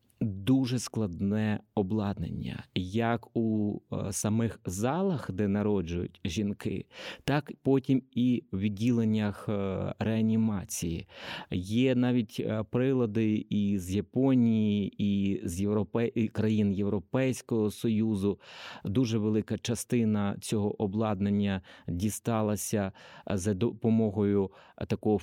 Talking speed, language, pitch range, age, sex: 85 wpm, Ukrainian, 100-115 Hz, 30-49, male